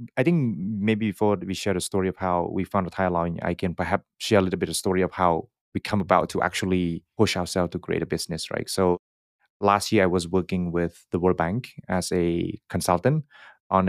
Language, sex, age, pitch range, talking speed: English, male, 20-39, 85-100 Hz, 220 wpm